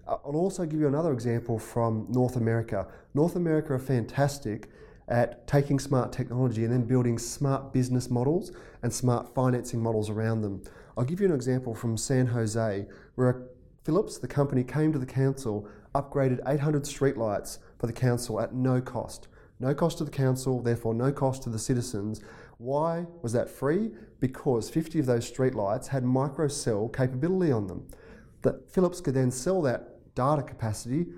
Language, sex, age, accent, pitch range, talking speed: English, male, 30-49, Australian, 115-145 Hz, 165 wpm